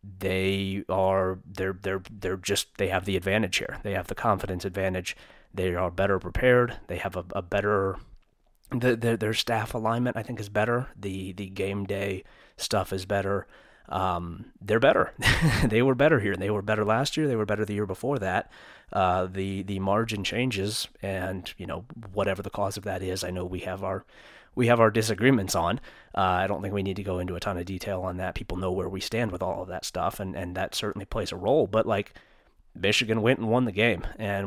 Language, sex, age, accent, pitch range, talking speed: English, male, 30-49, American, 95-110 Hz, 220 wpm